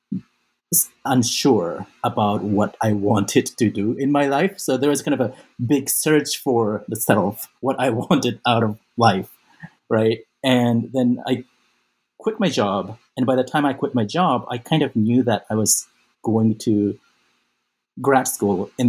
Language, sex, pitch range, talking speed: English, male, 110-140 Hz, 170 wpm